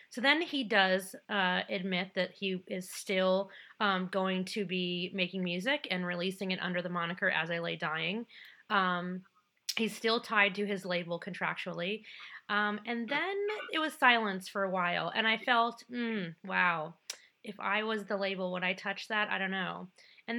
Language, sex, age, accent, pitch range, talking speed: English, female, 30-49, American, 180-215 Hz, 180 wpm